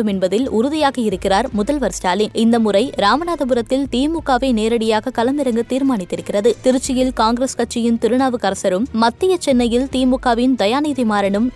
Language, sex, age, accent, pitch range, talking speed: Tamil, female, 20-39, native, 215-265 Hz, 95 wpm